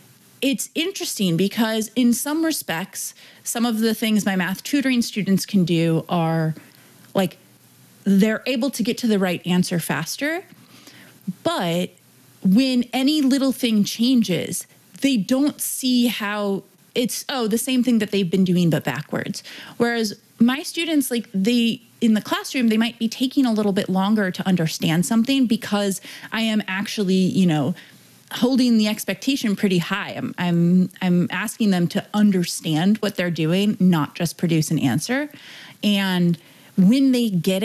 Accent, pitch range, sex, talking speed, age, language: American, 180-245 Hz, female, 155 wpm, 30-49, English